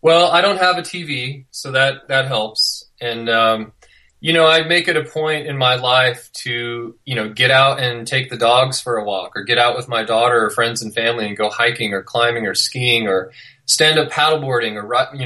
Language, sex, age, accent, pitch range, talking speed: English, male, 20-39, American, 115-140 Hz, 225 wpm